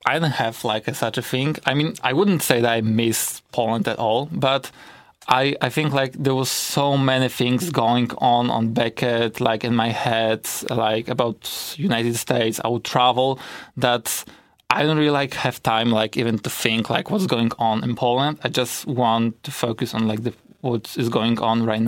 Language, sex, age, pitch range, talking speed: Polish, male, 20-39, 115-135 Hz, 205 wpm